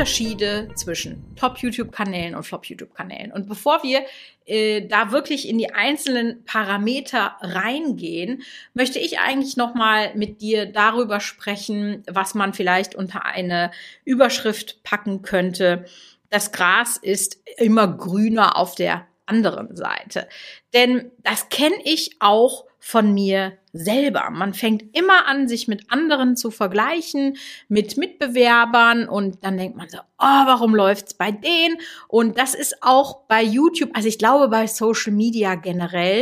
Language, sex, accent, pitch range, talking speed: German, female, German, 205-255 Hz, 145 wpm